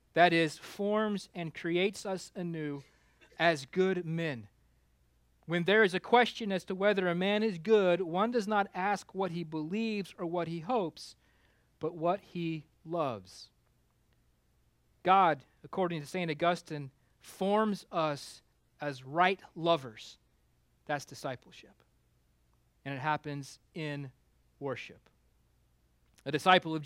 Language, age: English, 40-59